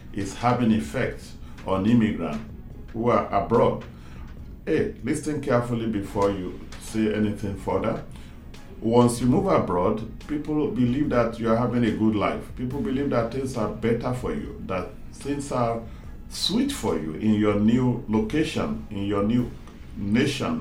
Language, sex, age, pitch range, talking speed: English, male, 40-59, 115-150 Hz, 150 wpm